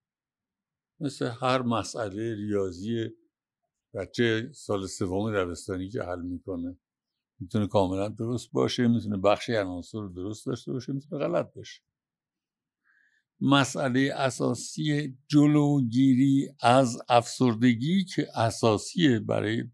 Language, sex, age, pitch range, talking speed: Persian, male, 60-79, 110-150 Hz, 100 wpm